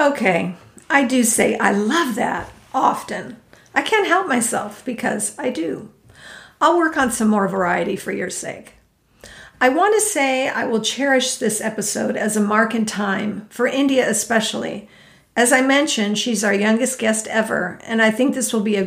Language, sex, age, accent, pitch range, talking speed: English, female, 50-69, American, 210-245 Hz, 180 wpm